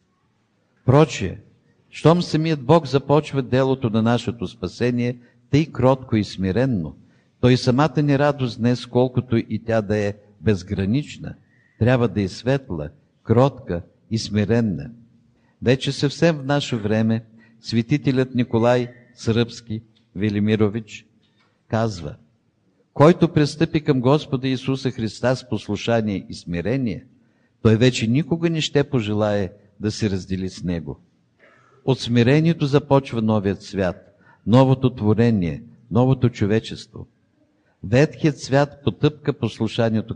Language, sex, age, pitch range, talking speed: Bulgarian, male, 50-69, 105-130 Hz, 110 wpm